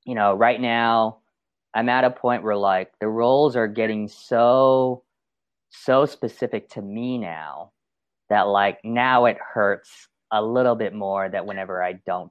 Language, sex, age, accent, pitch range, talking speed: English, male, 20-39, American, 95-120 Hz, 160 wpm